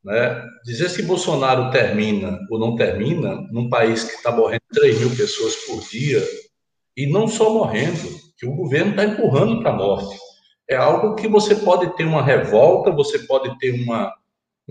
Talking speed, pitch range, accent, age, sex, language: 175 wpm, 130-220 Hz, Brazilian, 60-79, male, Portuguese